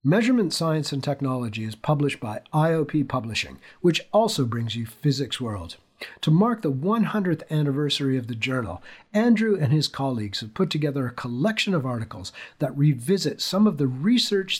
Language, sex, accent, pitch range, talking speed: English, male, American, 120-160 Hz, 165 wpm